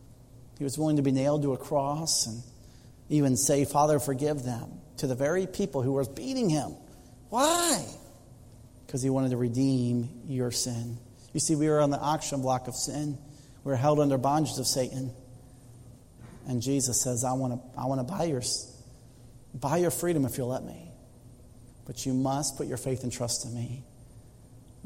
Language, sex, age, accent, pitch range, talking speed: English, male, 40-59, American, 120-135 Hz, 180 wpm